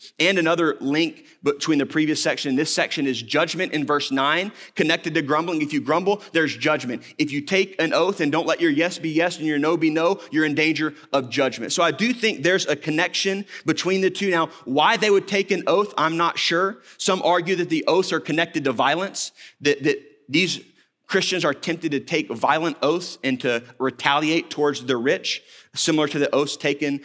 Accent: American